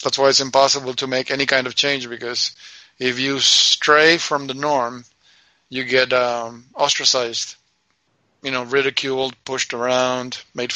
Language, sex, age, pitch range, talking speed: English, male, 50-69, 130-145 Hz, 150 wpm